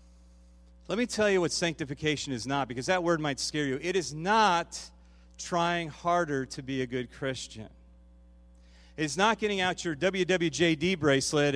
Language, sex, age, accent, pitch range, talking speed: English, male, 40-59, American, 105-175 Hz, 160 wpm